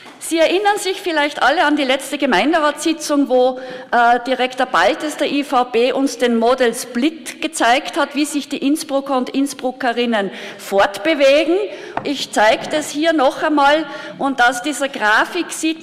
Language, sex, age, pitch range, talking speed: German, female, 50-69, 245-305 Hz, 150 wpm